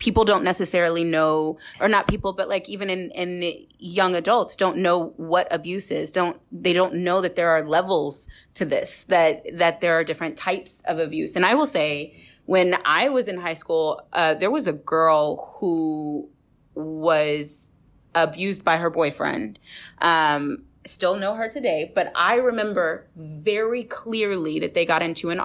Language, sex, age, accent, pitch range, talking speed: English, female, 20-39, American, 165-195 Hz, 170 wpm